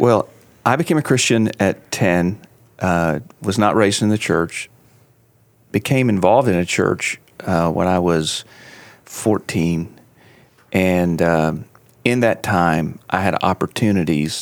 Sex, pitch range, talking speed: male, 90-110 Hz, 135 wpm